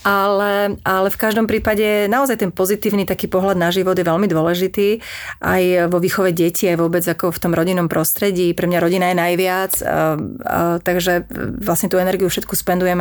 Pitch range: 180-205 Hz